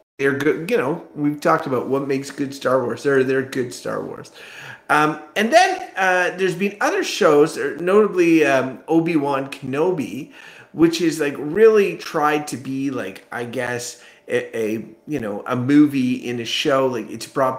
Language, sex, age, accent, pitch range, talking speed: English, male, 30-49, American, 120-150 Hz, 175 wpm